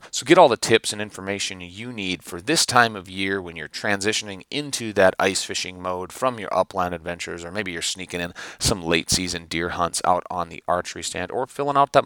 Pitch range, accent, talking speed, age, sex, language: 90-115 Hz, American, 225 wpm, 30-49, male, English